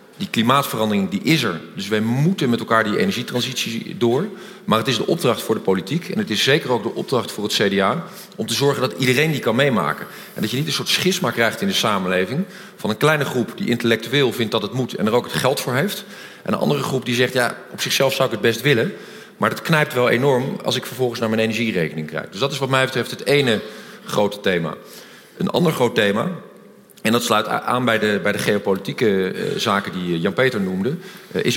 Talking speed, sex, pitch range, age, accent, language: 230 wpm, male, 110-150 Hz, 40-59, Dutch, Dutch